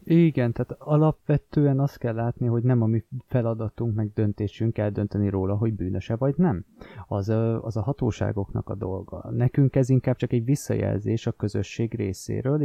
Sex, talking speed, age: male, 165 wpm, 20-39